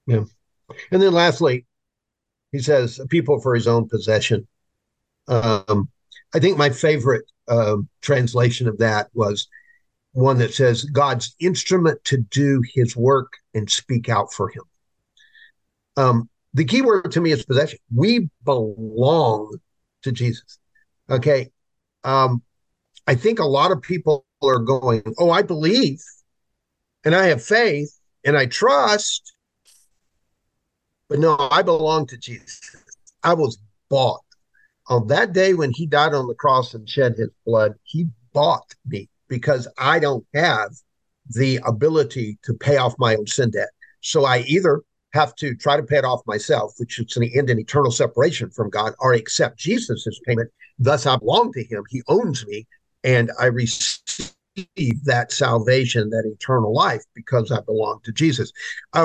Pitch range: 115-150 Hz